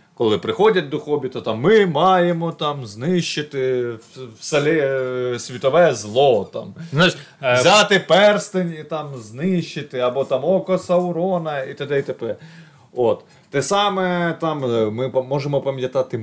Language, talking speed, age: Ukrainian, 120 wpm, 30-49